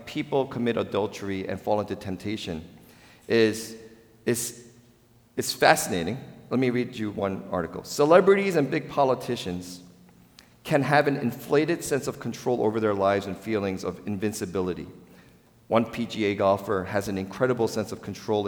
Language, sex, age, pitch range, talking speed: English, male, 40-59, 105-140 Hz, 145 wpm